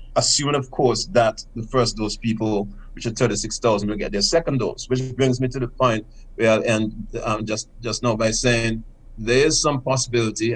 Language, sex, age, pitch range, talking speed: English, male, 30-49, 110-125 Hz, 195 wpm